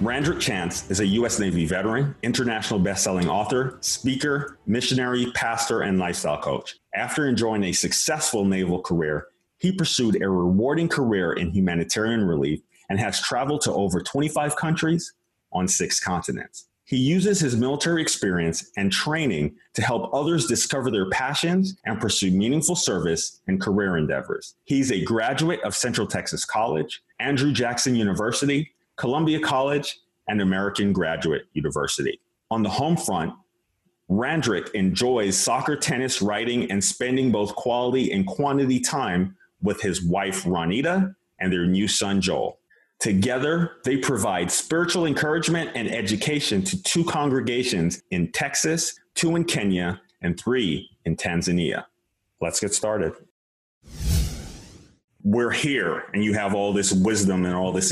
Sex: male